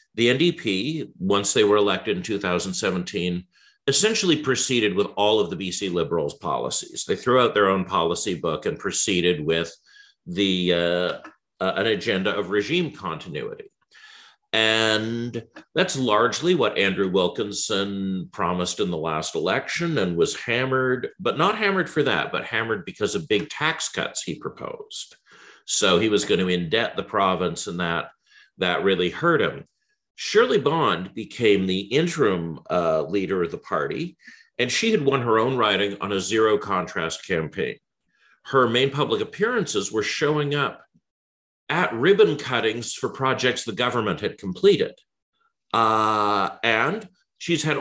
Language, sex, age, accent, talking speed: English, male, 50-69, American, 150 wpm